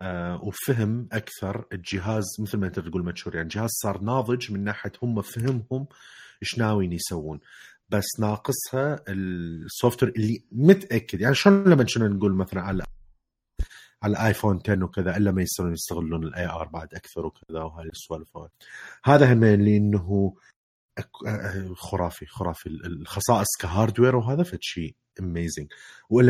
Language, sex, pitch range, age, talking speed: Arabic, male, 85-110 Hz, 30-49, 130 wpm